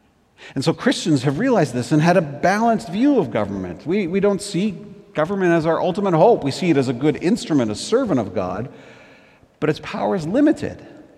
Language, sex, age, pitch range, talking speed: English, male, 40-59, 125-180 Hz, 205 wpm